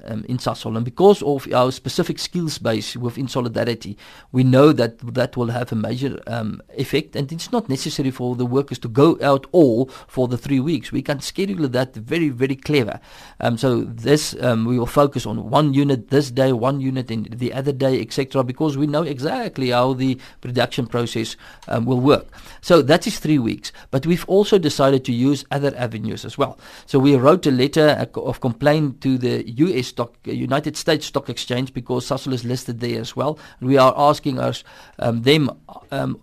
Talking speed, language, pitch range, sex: 190 wpm, English, 120-145 Hz, male